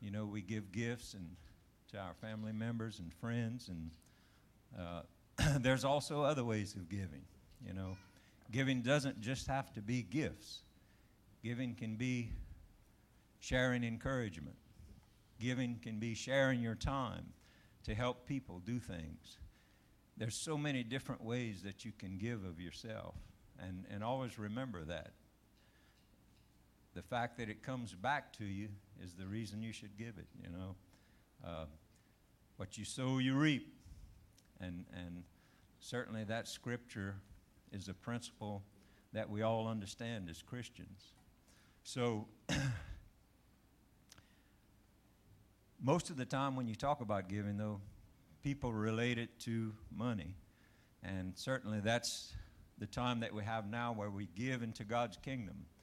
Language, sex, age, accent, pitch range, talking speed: English, male, 60-79, American, 95-120 Hz, 140 wpm